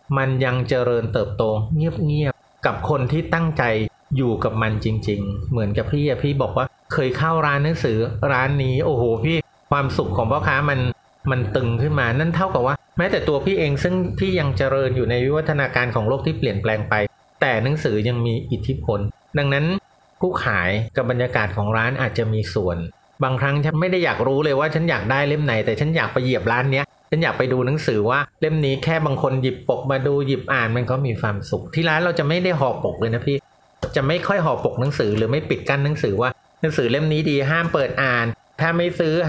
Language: Thai